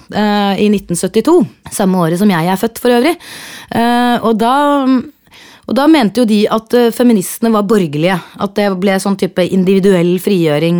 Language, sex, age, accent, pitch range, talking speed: English, female, 30-49, Swedish, 170-200 Hz, 150 wpm